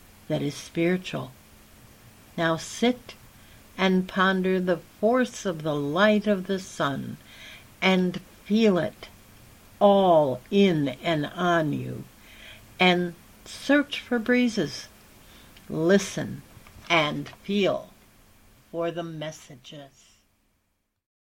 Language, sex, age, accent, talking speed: English, female, 60-79, American, 95 wpm